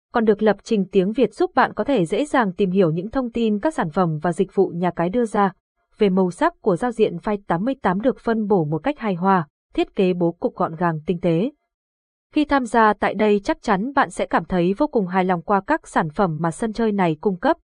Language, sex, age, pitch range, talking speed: Vietnamese, female, 20-39, 185-235 Hz, 255 wpm